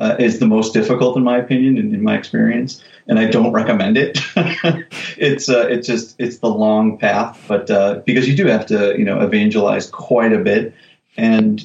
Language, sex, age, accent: English, male, 30-49, American